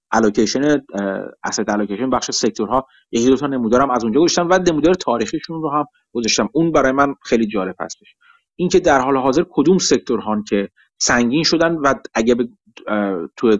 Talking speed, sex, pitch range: 165 wpm, male, 110-175 Hz